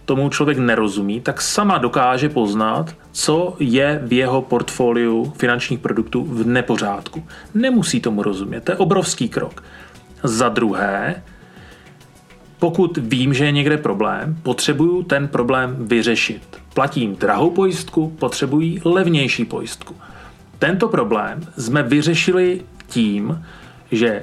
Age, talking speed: 30-49, 115 wpm